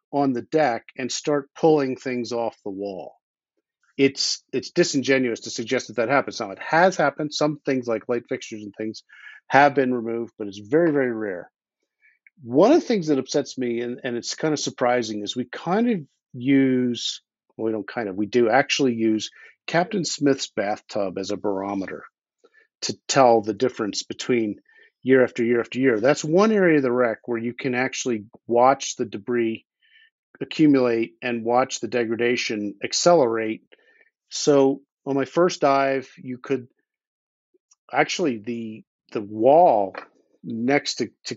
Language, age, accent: English, 50-69, American